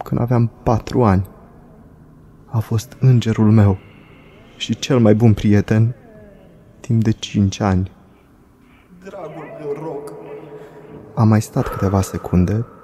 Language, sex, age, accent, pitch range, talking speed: Romanian, male, 20-39, native, 95-110 Hz, 105 wpm